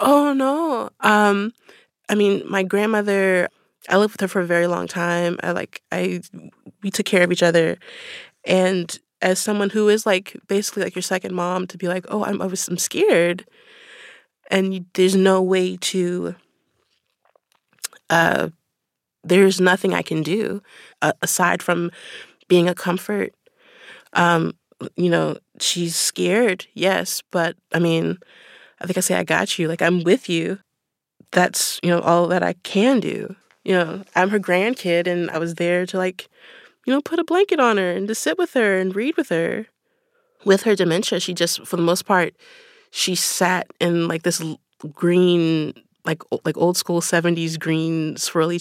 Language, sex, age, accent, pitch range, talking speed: English, female, 20-39, American, 170-205 Hz, 170 wpm